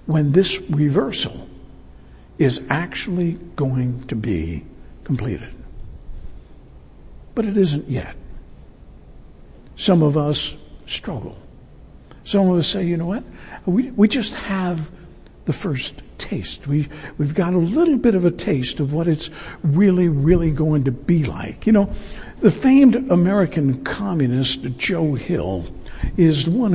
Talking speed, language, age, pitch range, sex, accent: 135 wpm, English, 60-79, 110-175 Hz, male, American